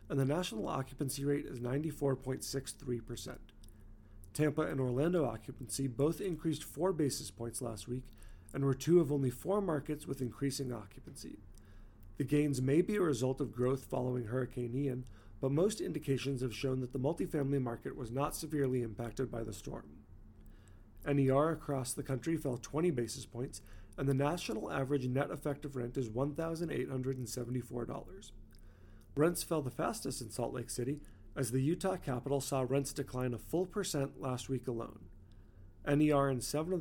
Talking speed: 160 wpm